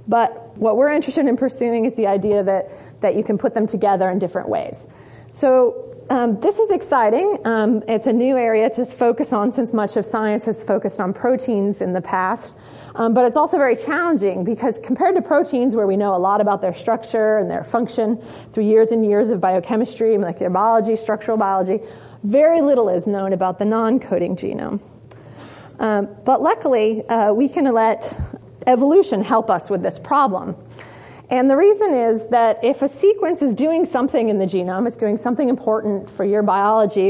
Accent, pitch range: American, 205-255 Hz